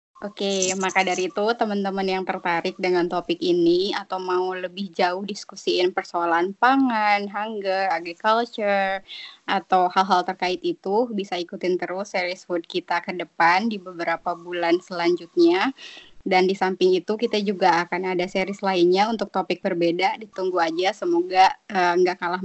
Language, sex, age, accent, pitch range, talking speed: Indonesian, female, 20-39, native, 180-205 Hz, 145 wpm